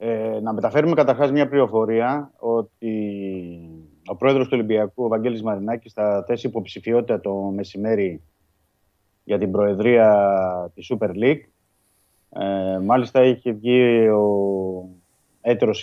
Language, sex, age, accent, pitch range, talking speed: Greek, male, 30-49, native, 100-125 Hz, 120 wpm